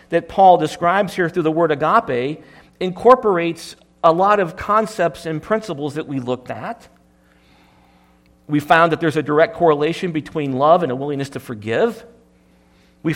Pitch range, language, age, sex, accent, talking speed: 135-180 Hz, English, 40-59, male, American, 155 wpm